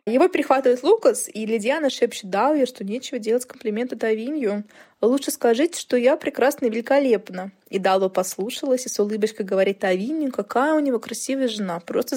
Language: Russian